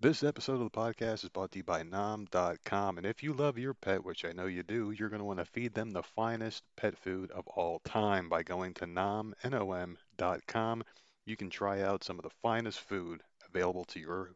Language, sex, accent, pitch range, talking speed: English, male, American, 90-115 Hz, 215 wpm